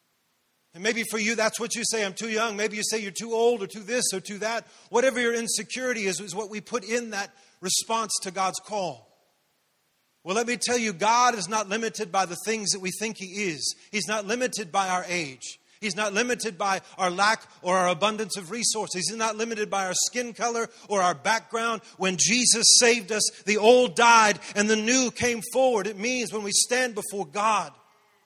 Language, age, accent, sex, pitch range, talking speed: English, 40-59, American, male, 185-230 Hz, 210 wpm